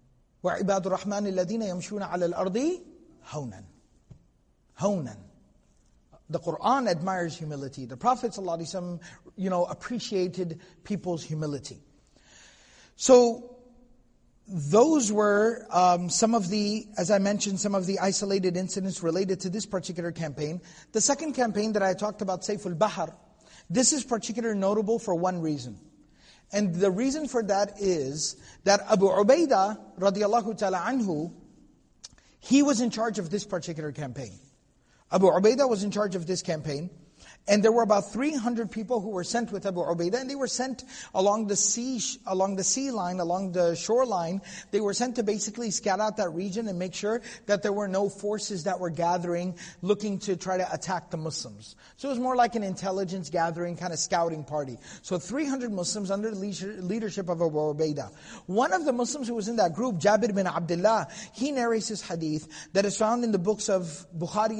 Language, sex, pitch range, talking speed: English, male, 175-220 Hz, 165 wpm